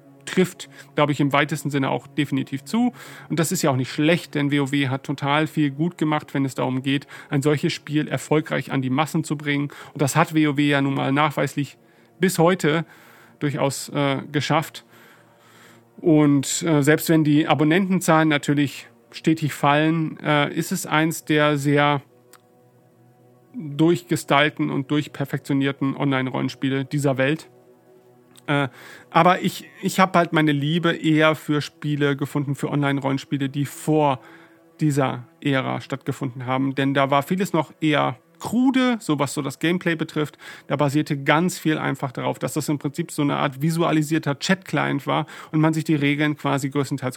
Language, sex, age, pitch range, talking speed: German, male, 40-59, 140-160 Hz, 160 wpm